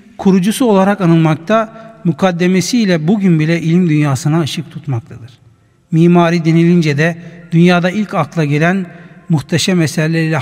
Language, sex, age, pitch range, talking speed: Turkish, male, 60-79, 150-180 Hz, 110 wpm